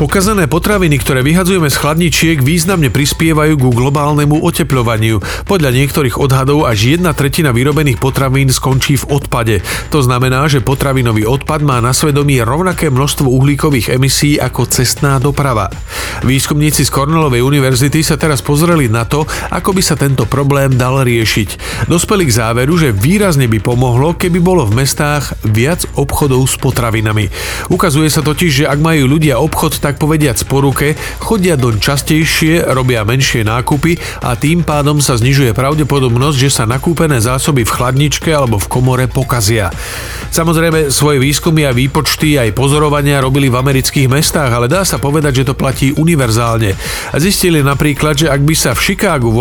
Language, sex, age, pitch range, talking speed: Slovak, male, 40-59, 125-155 Hz, 155 wpm